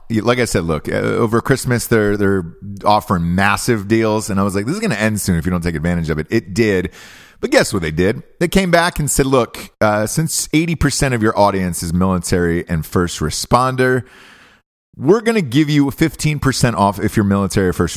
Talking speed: 215 wpm